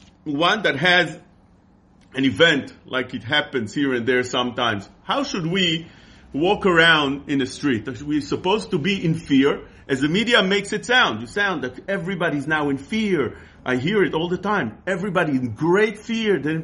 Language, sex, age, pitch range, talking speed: English, male, 40-59, 150-215 Hz, 185 wpm